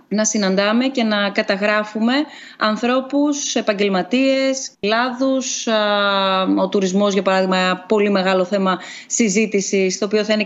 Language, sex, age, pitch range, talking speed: Greek, female, 20-39, 205-255 Hz, 120 wpm